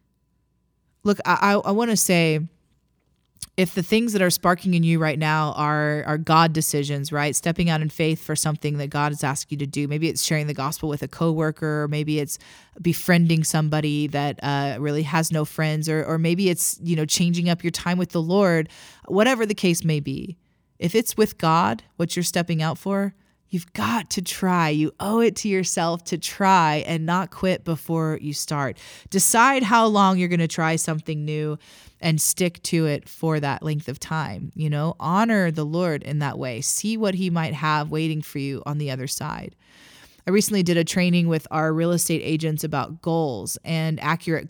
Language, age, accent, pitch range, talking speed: English, 20-39, American, 150-180 Hz, 200 wpm